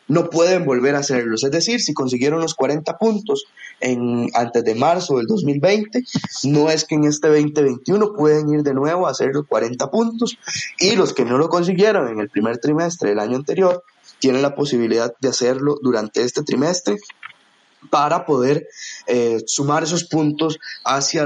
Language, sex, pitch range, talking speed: Spanish, male, 125-170 Hz, 170 wpm